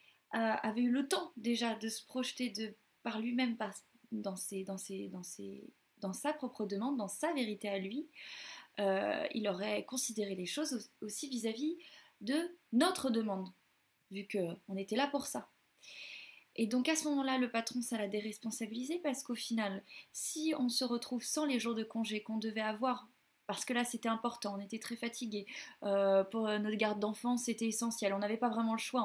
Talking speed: 175 wpm